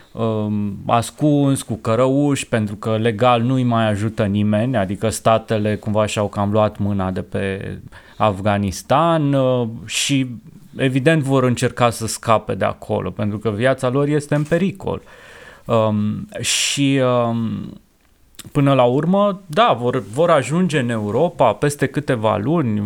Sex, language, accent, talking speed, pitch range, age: male, Romanian, native, 125 wpm, 115-145 Hz, 20-39